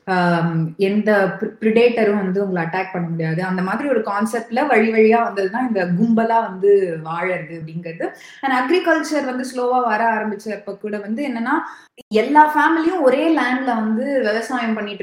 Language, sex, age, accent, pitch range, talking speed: Tamil, female, 20-39, native, 195-255 Hz, 140 wpm